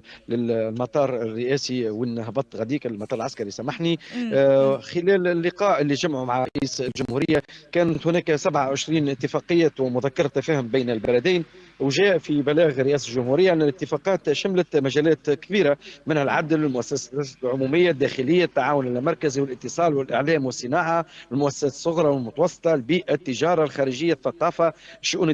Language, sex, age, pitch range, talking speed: Arabic, male, 40-59, 140-175 Hz, 120 wpm